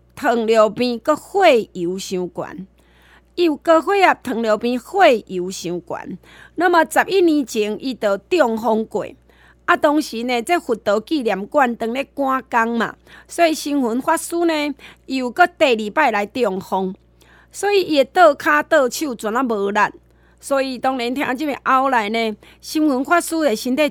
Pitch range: 220-310 Hz